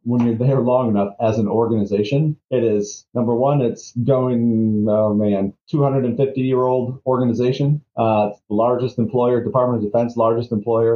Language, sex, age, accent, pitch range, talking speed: English, male, 40-59, American, 105-125 Hz, 160 wpm